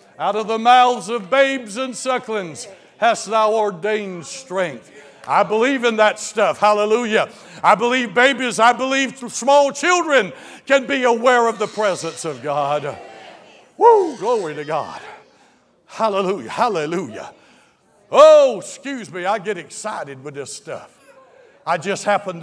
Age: 60-79